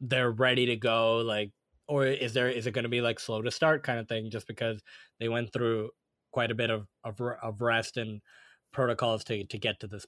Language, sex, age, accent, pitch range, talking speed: English, male, 20-39, American, 120-150 Hz, 230 wpm